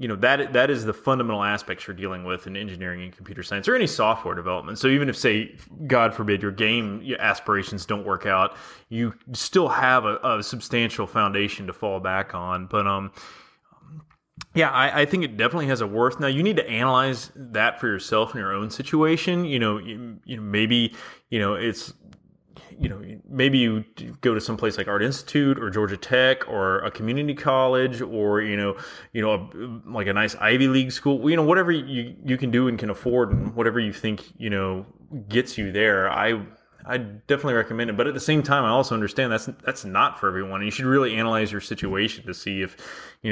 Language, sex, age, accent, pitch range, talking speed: English, male, 20-39, American, 100-130 Hz, 210 wpm